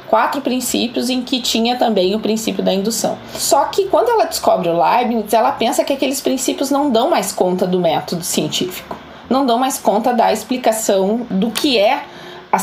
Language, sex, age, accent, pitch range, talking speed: Portuguese, female, 20-39, Brazilian, 210-260 Hz, 185 wpm